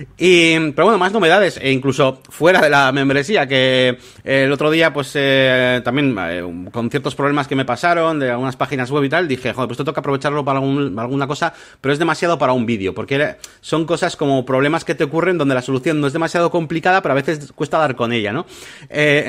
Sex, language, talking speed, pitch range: male, Spanish, 225 wpm, 130-165 Hz